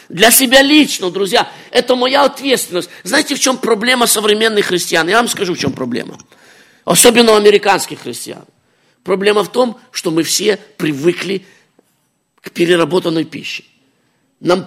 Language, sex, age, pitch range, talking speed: English, male, 50-69, 180-260 Hz, 140 wpm